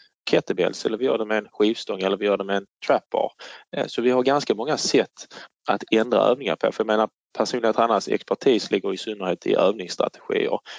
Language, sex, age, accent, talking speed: Swedish, male, 20-39, Norwegian, 190 wpm